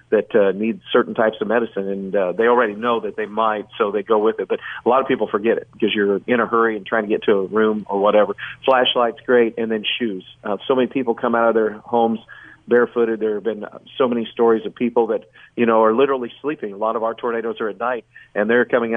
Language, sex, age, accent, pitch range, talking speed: English, male, 40-59, American, 110-125 Hz, 255 wpm